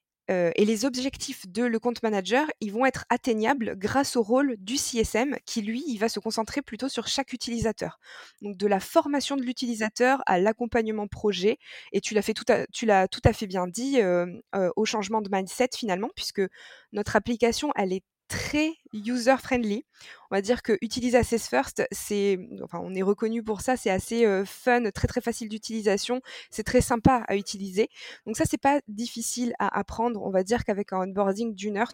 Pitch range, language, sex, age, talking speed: 205-245 Hz, French, female, 20-39, 200 wpm